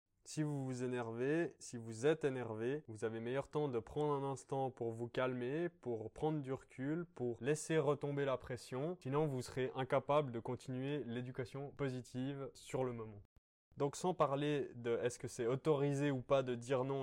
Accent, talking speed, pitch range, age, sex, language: French, 185 wpm, 120-155 Hz, 20-39, male, French